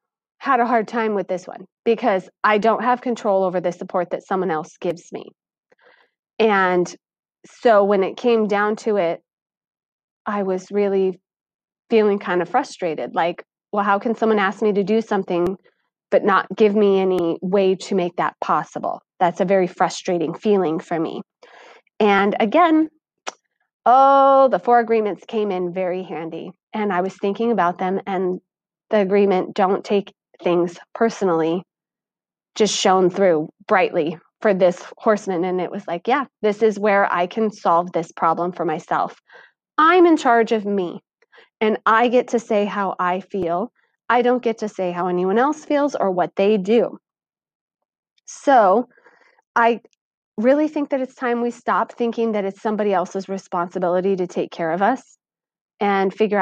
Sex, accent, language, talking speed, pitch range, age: female, American, English, 165 wpm, 185-230 Hz, 30-49